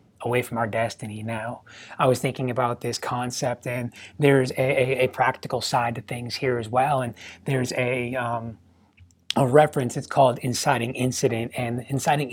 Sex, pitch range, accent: male, 125-140 Hz, American